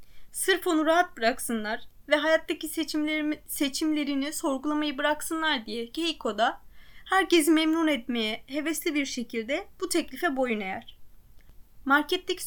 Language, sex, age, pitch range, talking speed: Turkish, female, 20-39, 270-335 Hz, 105 wpm